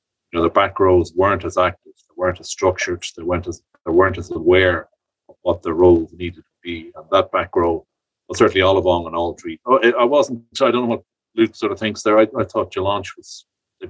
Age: 30-49